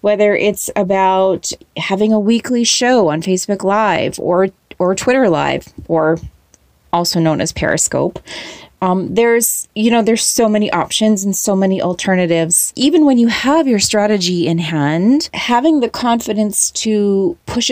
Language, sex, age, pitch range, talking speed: English, female, 30-49, 175-225 Hz, 150 wpm